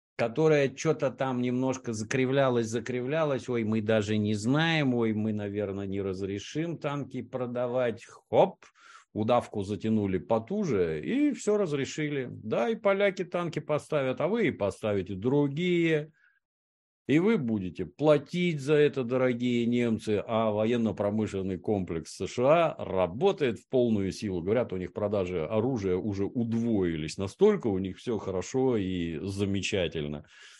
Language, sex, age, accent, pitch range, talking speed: Russian, male, 50-69, native, 90-125 Hz, 125 wpm